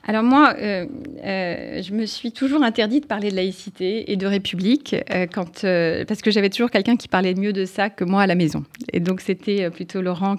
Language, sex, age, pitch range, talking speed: French, female, 30-49, 170-195 Hz, 225 wpm